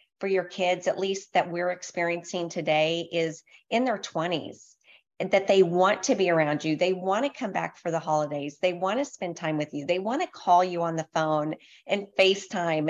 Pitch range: 170-215 Hz